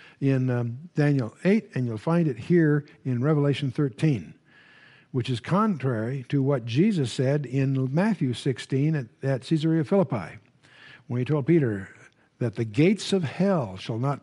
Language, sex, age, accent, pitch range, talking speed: English, male, 60-79, American, 120-160 Hz, 155 wpm